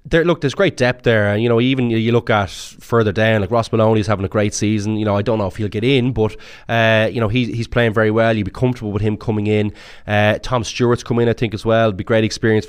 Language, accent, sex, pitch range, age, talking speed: English, Irish, male, 105-130 Hz, 20-39, 285 wpm